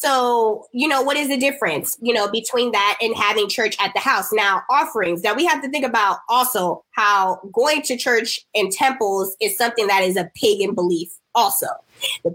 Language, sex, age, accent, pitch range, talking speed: English, female, 20-39, American, 205-255 Hz, 200 wpm